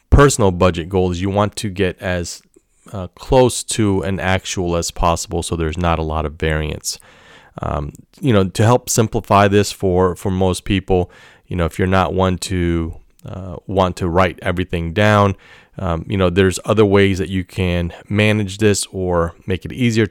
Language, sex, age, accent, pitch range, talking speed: English, male, 30-49, American, 85-100 Hz, 180 wpm